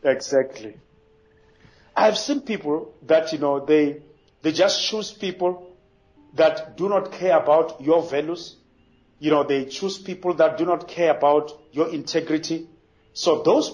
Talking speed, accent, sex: 150 wpm, South African, male